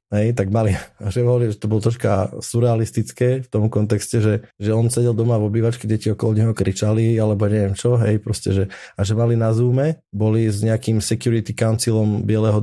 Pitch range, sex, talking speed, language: 100-115 Hz, male, 185 wpm, Slovak